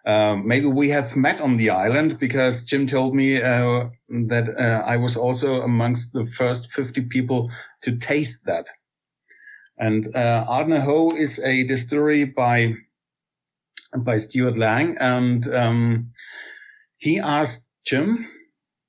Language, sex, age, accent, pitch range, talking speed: English, male, 50-69, German, 120-145 Hz, 135 wpm